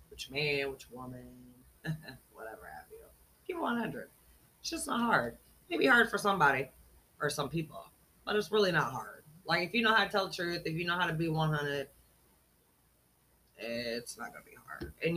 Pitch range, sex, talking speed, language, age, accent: 145-205 Hz, female, 190 wpm, English, 30-49, American